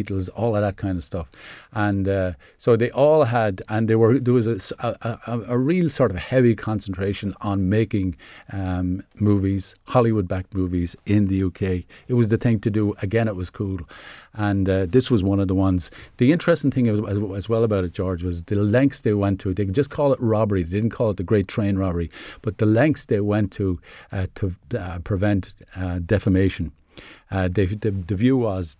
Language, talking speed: English, 205 wpm